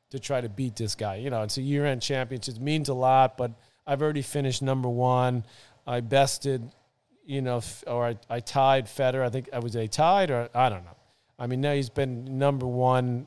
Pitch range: 115-135 Hz